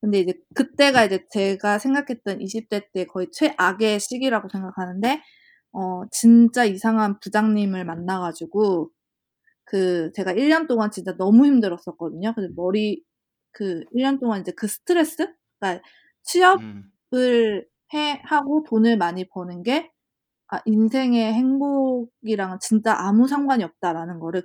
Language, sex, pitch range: Korean, female, 185-255 Hz